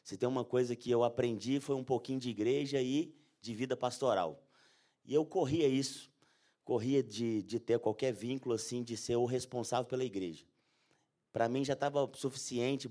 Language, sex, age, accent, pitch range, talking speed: Portuguese, male, 30-49, Brazilian, 105-135 Hz, 175 wpm